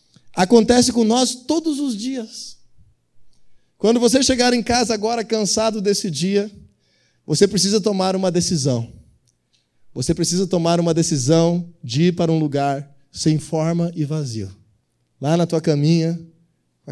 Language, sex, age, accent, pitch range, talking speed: Portuguese, male, 20-39, Brazilian, 150-230 Hz, 140 wpm